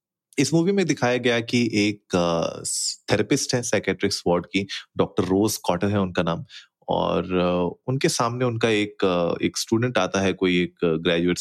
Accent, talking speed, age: native, 145 wpm, 30-49